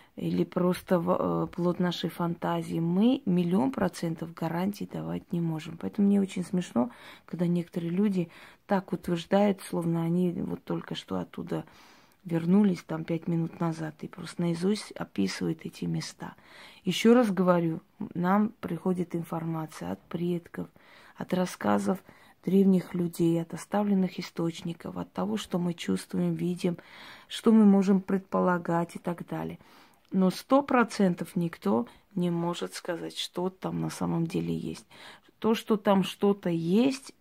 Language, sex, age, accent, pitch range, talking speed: Russian, female, 20-39, native, 165-200 Hz, 140 wpm